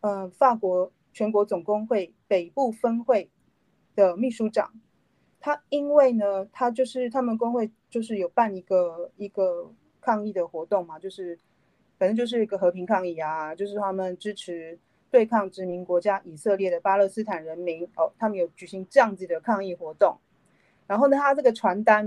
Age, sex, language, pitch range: 30-49, female, Chinese, 185-245 Hz